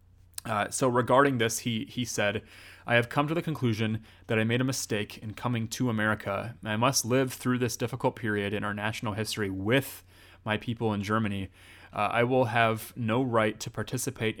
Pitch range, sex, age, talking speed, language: 100-120 Hz, male, 30-49, 190 wpm, English